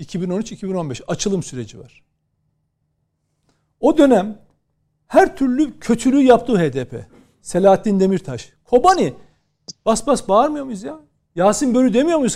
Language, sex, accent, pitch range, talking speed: Turkish, male, native, 200-275 Hz, 110 wpm